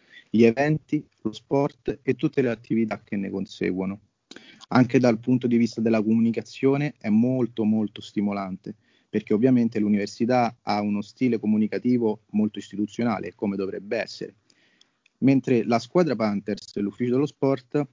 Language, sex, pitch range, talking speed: Italian, male, 105-125 Hz, 135 wpm